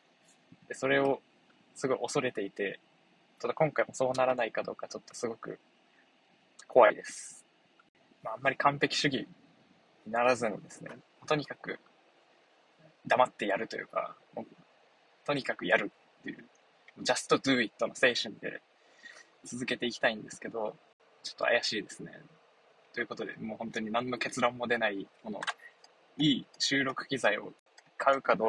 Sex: male